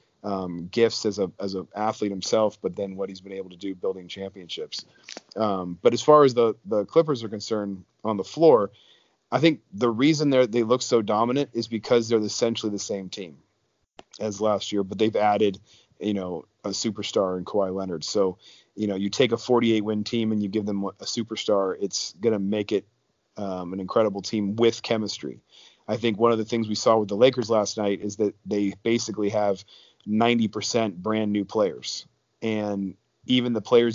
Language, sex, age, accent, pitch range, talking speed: English, male, 30-49, American, 100-115 Hz, 195 wpm